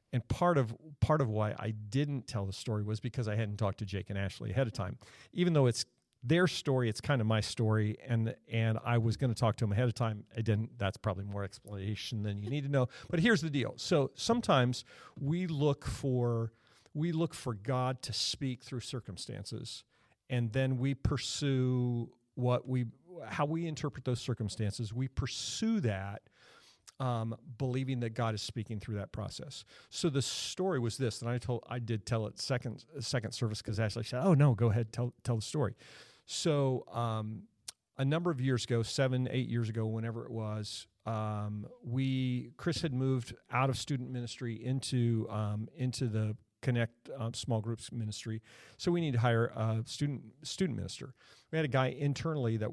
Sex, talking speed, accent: male, 190 wpm, American